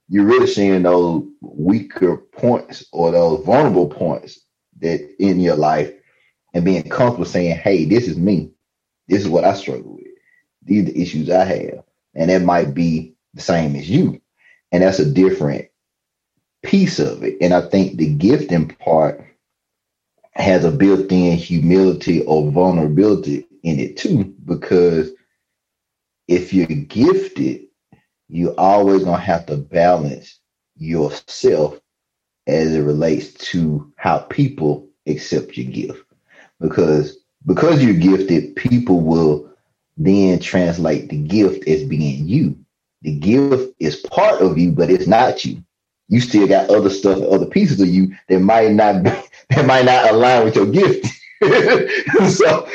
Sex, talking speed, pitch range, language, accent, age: male, 145 wpm, 80-120 Hz, English, American, 30-49